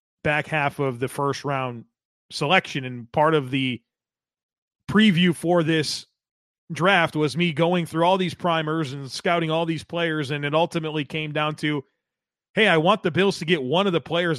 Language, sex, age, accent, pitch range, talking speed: English, male, 30-49, American, 140-170 Hz, 185 wpm